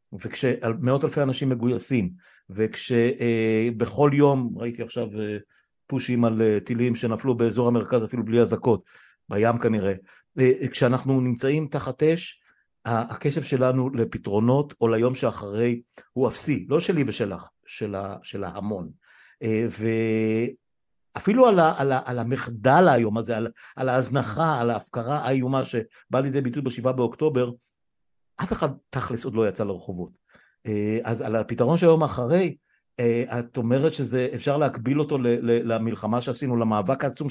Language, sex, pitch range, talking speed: Hebrew, male, 115-140 Hz, 135 wpm